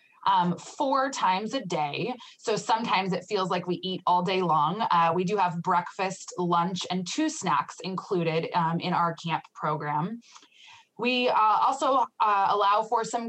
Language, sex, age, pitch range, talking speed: English, female, 20-39, 175-220 Hz, 165 wpm